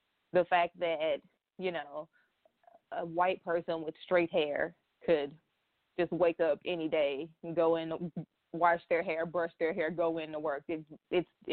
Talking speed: 160 wpm